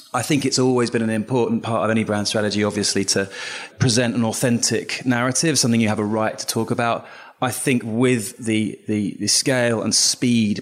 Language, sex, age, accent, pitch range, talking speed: English, male, 20-39, British, 100-120 Hz, 200 wpm